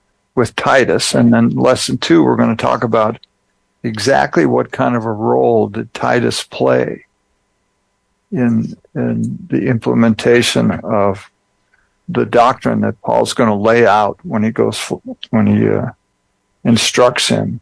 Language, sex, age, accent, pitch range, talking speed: English, male, 60-79, American, 100-120 Hz, 140 wpm